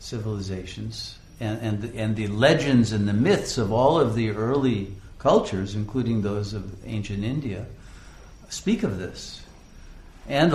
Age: 60-79